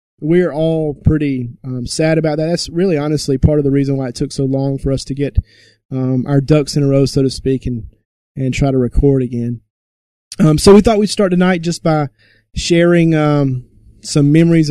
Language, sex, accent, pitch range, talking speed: English, male, American, 135-170 Hz, 210 wpm